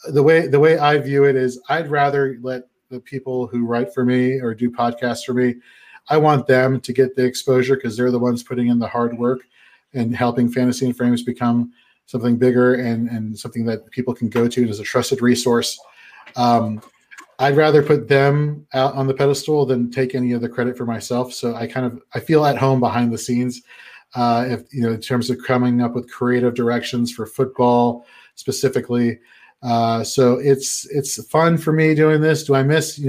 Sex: male